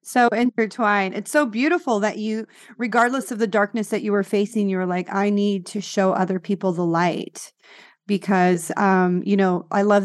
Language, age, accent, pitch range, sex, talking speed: English, 30-49, American, 195-220 Hz, female, 190 wpm